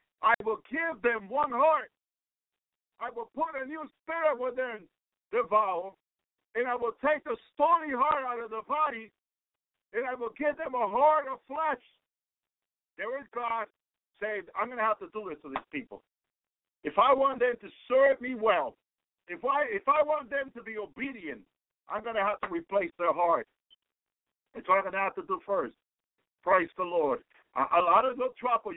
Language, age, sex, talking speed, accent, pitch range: English, 50-69, male, 195 wpm, American, 205-270 Hz